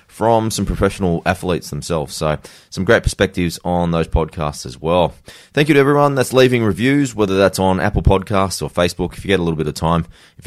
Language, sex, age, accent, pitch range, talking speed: English, male, 20-39, Australian, 80-100 Hz, 210 wpm